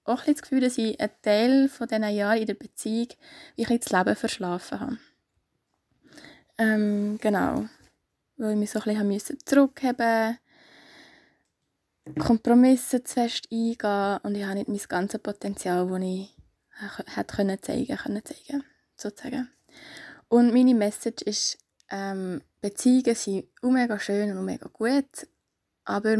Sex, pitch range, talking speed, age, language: female, 210-260 Hz, 135 wpm, 20-39, German